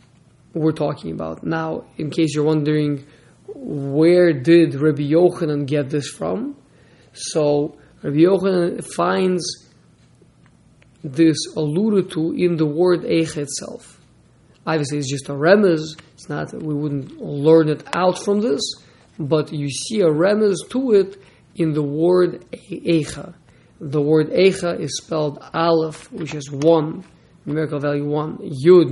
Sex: male